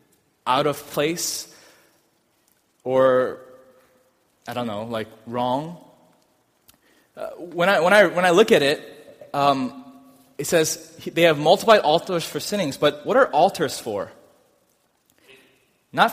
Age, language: 20-39, English